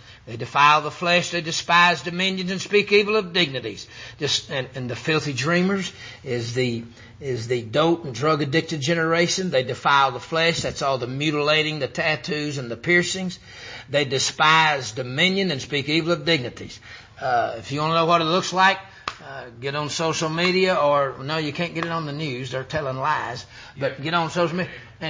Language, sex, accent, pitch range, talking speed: English, male, American, 125-175 Hz, 190 wpm